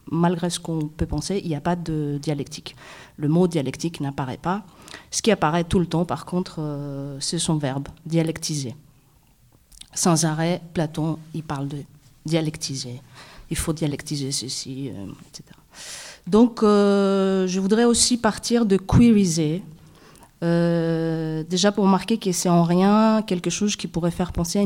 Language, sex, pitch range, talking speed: French, female, 155-185 Hz, 175 wpm